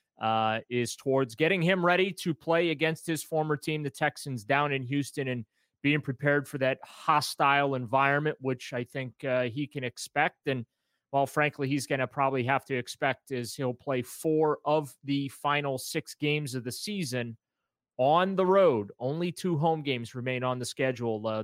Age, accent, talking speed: 30-49, American, 180 wpm